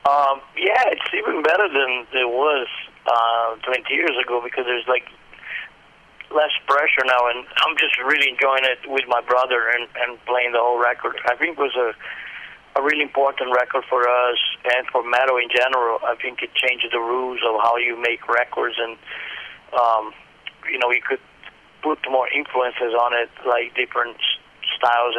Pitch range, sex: 120-130 Hz, male